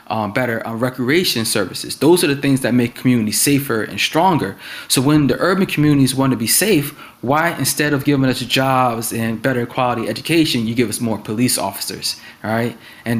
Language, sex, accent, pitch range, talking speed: English, male, American, 115-140 Hz, 195 wpm